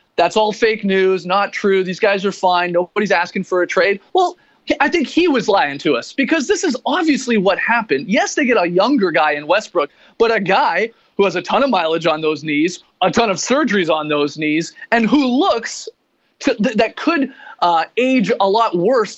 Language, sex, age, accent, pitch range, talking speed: English, male, 30-49, American, 190-255 Hz, 205 wpm